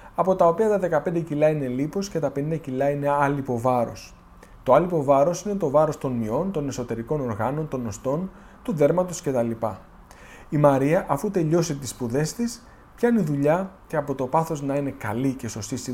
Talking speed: 190 wpm